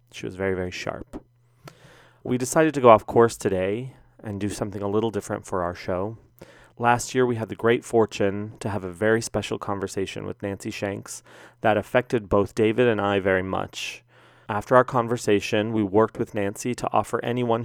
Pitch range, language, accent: 100-125 Hz, English, American